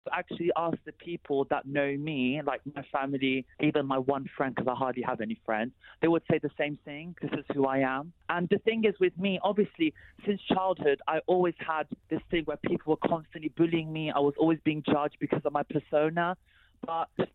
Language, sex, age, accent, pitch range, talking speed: English, male, 20-39, British, 140-170 Hz, 215 wpm